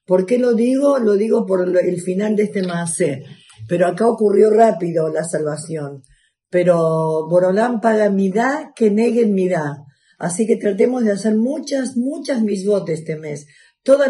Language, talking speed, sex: Spanish, 165 wpm, female